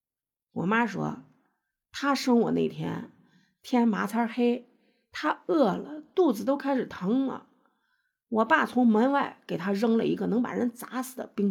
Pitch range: 195-265 Hz